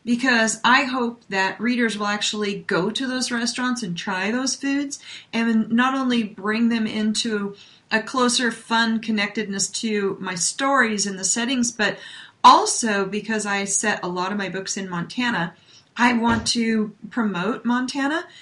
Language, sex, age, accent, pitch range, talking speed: English, female, 40-59, American, 195-230 Hz, 155 wpm